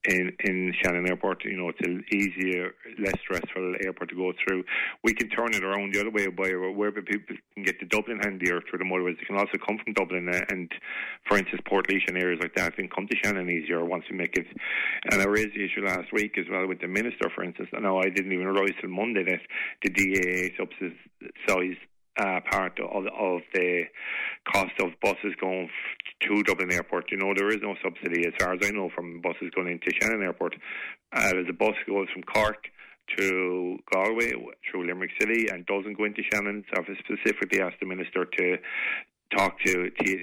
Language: English